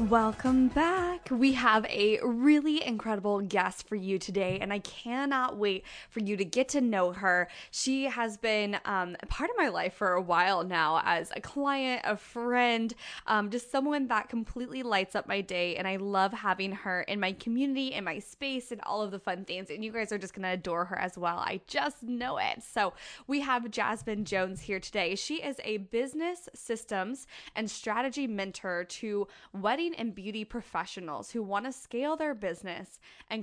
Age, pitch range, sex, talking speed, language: 20-39, 195-255 Hz, female, 190 wpm, English